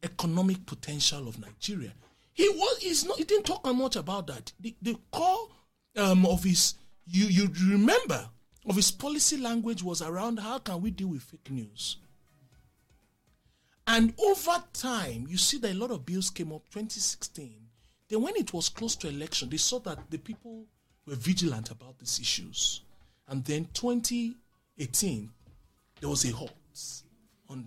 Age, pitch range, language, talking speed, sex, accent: 40-59, 125-200 Hz, English, 155 wpm, male, Nigerian